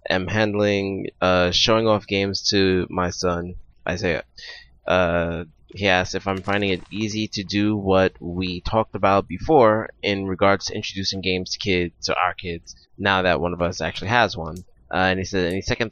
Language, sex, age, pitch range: English, male, 20-39, 90-100 Hz